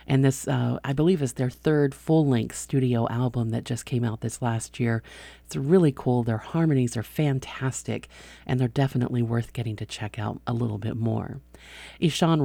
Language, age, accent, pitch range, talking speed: English, 40-59, American, 120-155 Hz, 185 wpm